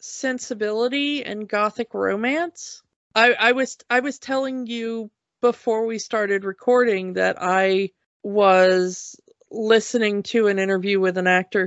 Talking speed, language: 130 wpm, English